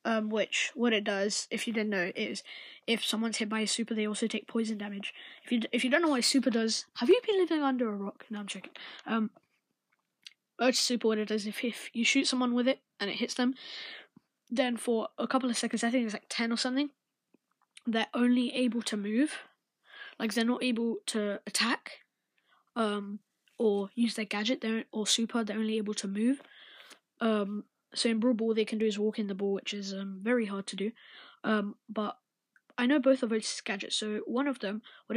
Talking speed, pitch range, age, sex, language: 220 wpm, 215-255 Hz, 10-29, female, English